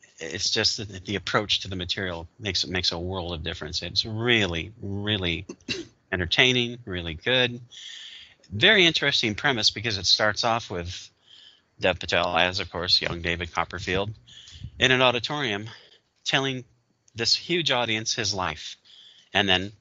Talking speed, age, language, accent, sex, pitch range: 145 wpm, 40-59, English, American, male, 90-115 Hz